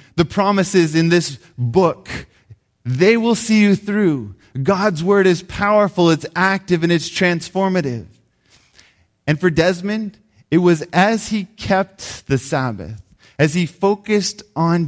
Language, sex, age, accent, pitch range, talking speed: English, male, 20-39, American, 120-170 Hz, 135 wpm